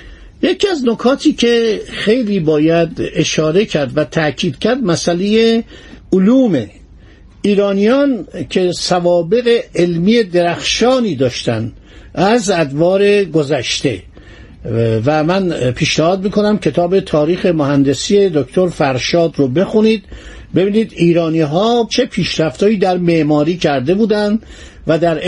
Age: 60-79